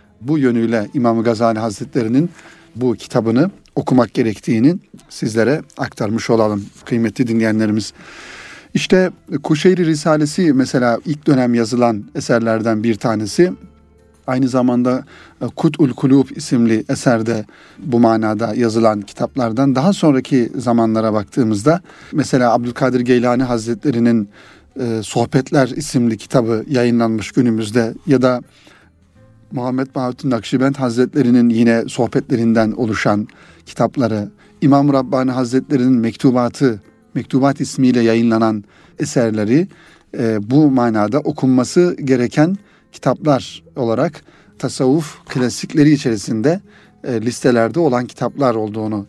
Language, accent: Turkish, native